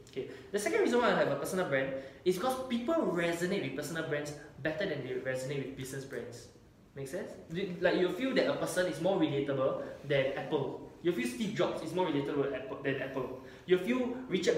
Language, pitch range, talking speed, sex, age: English, 130-175 Hz, 200 wpm, male, 10-29